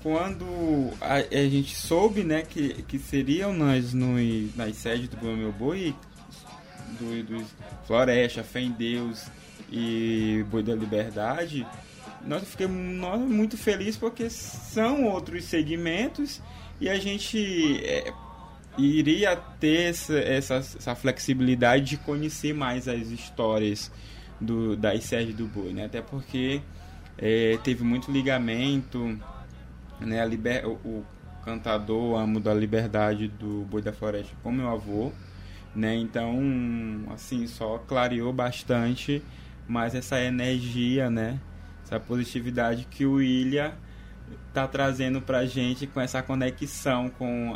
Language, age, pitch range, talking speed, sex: Portuguese, 20-39, 110-140 Hz, 125 wpm, male